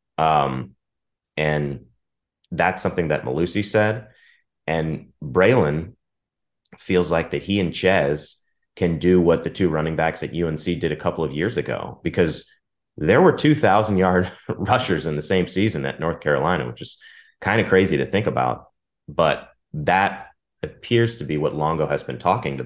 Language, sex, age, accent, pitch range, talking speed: English, male, 30-49, American, 75-100 Hz, 165 wpm